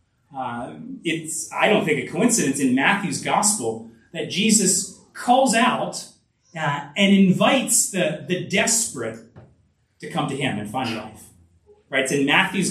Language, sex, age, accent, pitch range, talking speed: English, male, 30-49, American, 130-210 Hz, 145 wpm